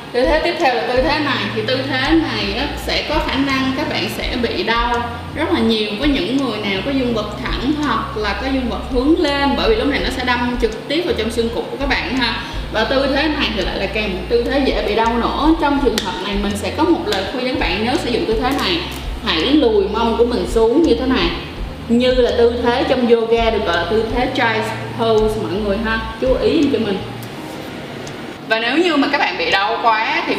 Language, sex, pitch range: Vietnamese, female, 225-275 Hz